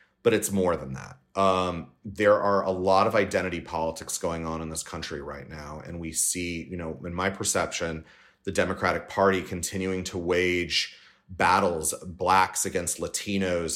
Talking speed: 165 wpm